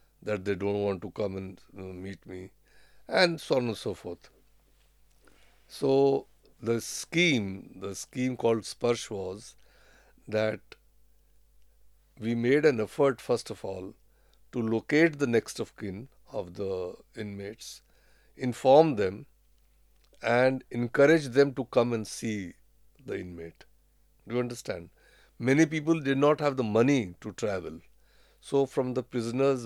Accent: native